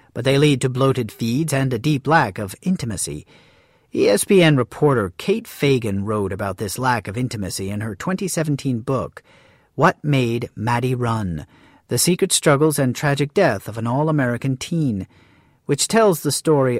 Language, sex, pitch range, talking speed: English, male, 120-155 Hz, 155 wpm